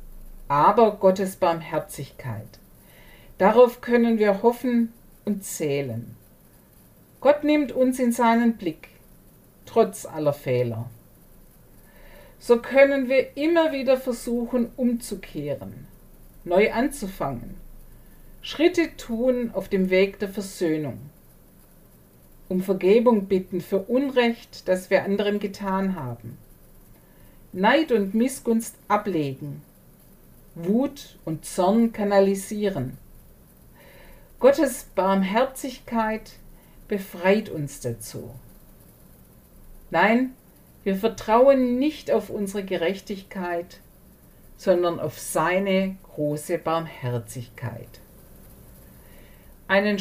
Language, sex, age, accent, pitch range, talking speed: German, female, 50-69, German, 160-235 Hz, 85 wpm